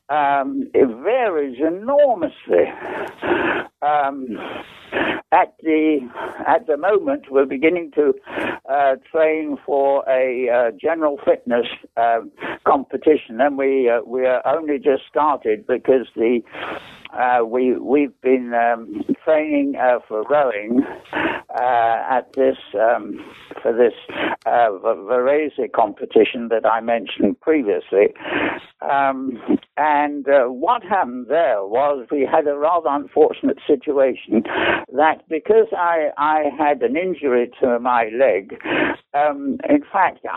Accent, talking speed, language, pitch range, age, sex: British, 120 wpm, English, 140-220 Hz, 60-79, male